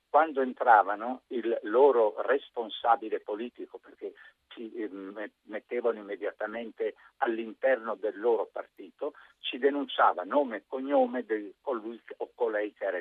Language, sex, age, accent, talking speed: Italian, male, 60-79, native, 115 wpm